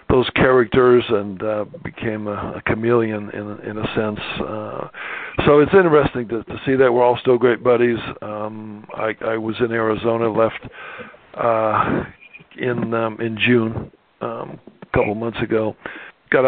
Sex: male